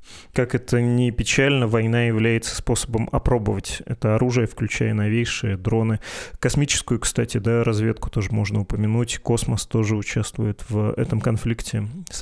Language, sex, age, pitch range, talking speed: Russian, male, 20-39, 110-125 Hz, 135 wpm